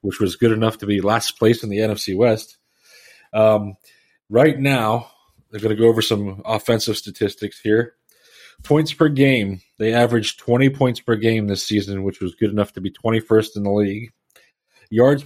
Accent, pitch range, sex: American, 105-120 Hz, male